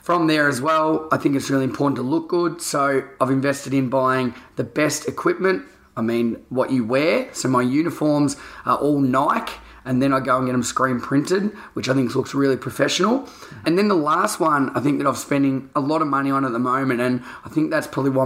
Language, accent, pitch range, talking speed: English, Australian, 125-145 Hz, 230 wpm